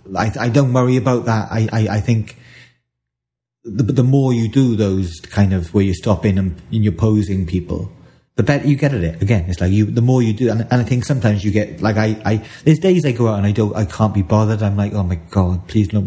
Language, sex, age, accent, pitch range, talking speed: English, male, 30-49, British, 100-140 Hz, 260 wpm